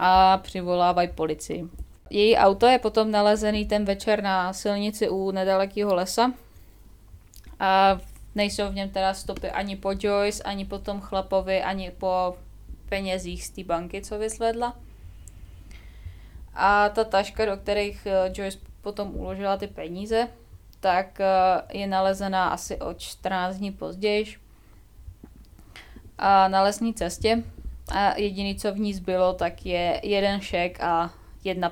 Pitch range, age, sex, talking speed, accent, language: 170-205 Hz, 20-39, female, 130 wpm, native, Czech